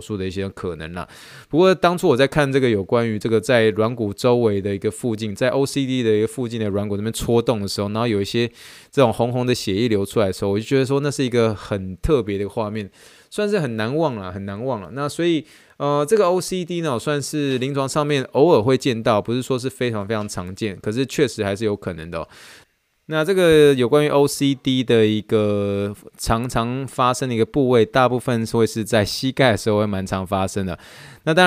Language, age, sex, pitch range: Chinese, 20-39, male, 100-130 Hz